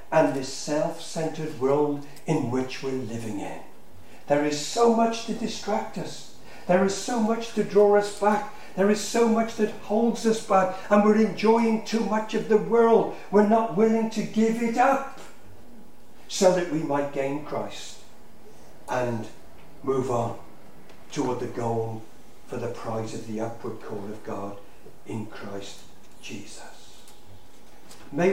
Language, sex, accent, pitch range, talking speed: English, male, British, 140-210 Hz, 155 wpm